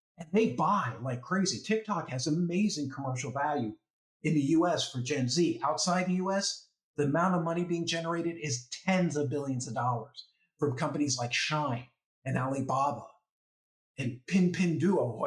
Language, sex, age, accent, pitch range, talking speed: English, male, 50-69, American, 140-185 Hz, 155 wpm